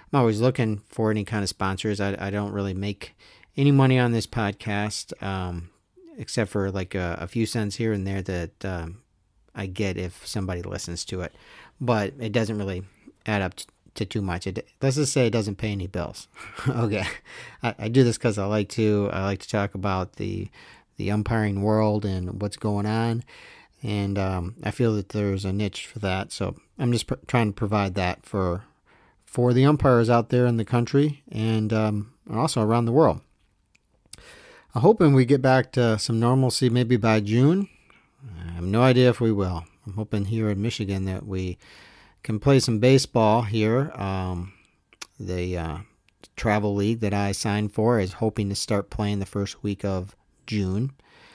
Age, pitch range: 40-59, 100-115 Hz